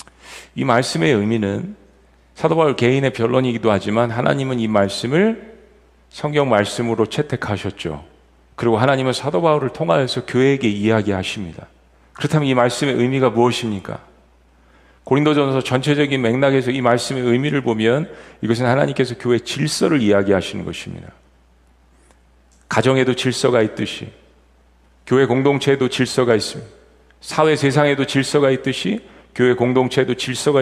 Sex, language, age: male, Korean, 40-59